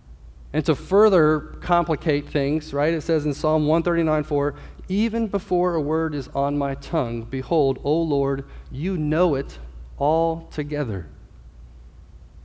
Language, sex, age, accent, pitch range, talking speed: English, male, 40-59, American, 115-160 Hz, 125 wpm